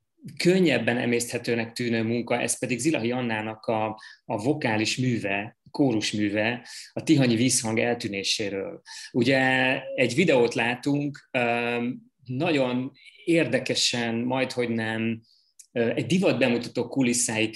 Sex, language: male, Hungarian